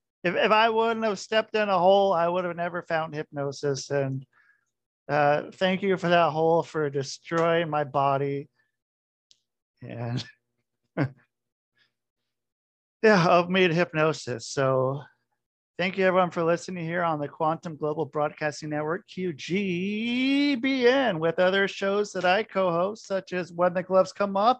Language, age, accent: English, 40-59, American